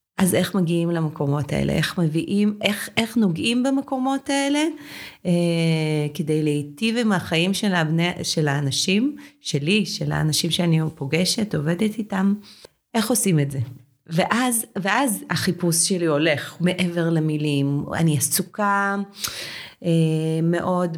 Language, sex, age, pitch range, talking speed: Hebrew, female, 30-49, 160-210 Hz, 115 wpm